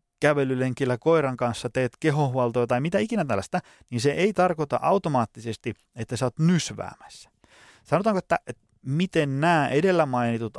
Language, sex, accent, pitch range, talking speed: Finnish, male, native, 115-150 Hz, 140 wpm